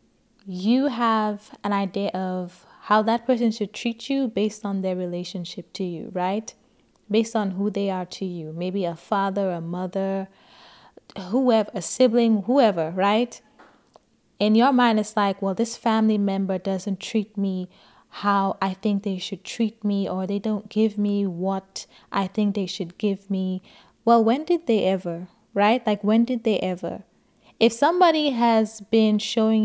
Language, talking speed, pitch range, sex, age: English, 165 wpm, 195-225 Hz, female, 20-39